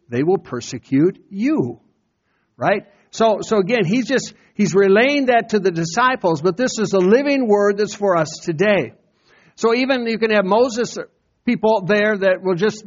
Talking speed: 175 wpm